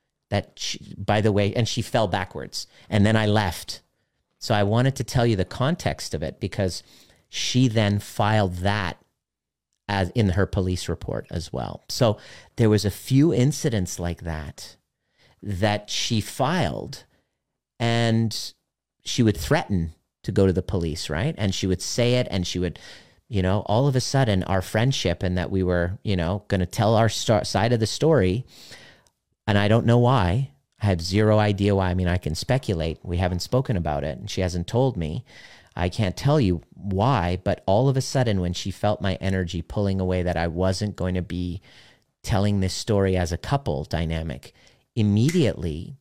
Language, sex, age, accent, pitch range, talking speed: English, male, 40-59, American, 90-110 Hz, 185 wpm